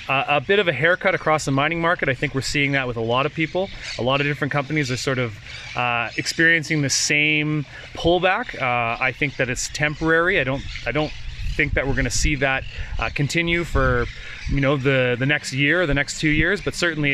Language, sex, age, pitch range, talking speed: English, male, 30-49, 125-150 Hz, 230 wpm